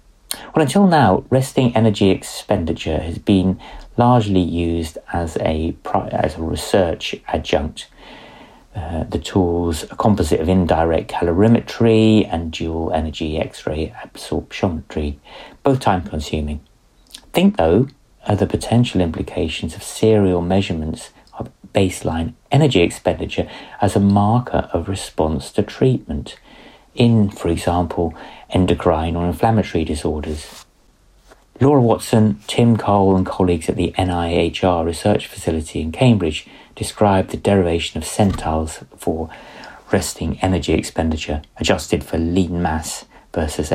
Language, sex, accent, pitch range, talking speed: English, male, British, 80-105 Hz, 120 wpm